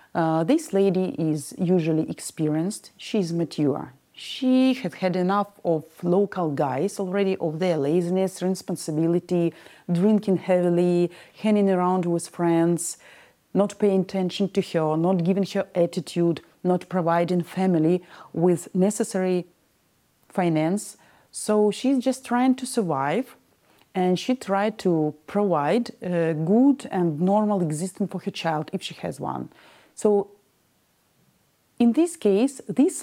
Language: English